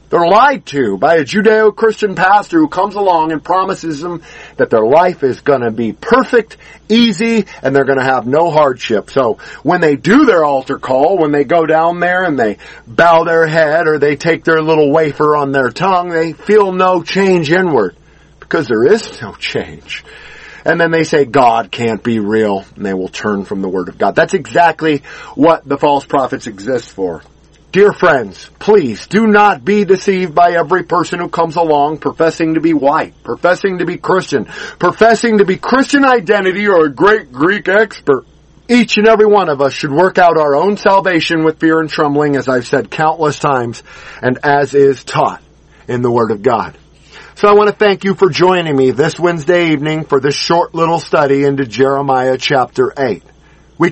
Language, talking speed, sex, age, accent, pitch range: English, 195 wpm, male, 50-69, American, 145-195 Hz